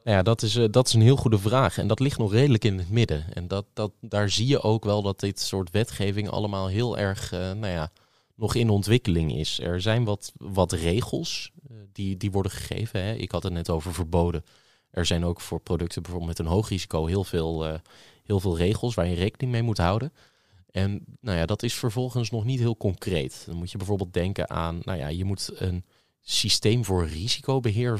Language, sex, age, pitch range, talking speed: Dutch, male, 20-39, 90-115 Hz, 225 wpm